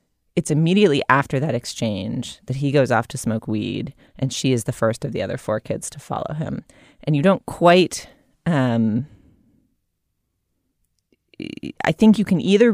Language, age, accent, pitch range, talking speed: English, 30-49, American, 115-150 Hz, 165 wpm